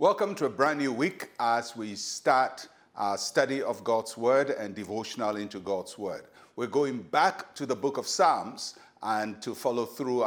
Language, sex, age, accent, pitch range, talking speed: English, male, 60-79, Nigerian, 110-140 Hz, 180 wpm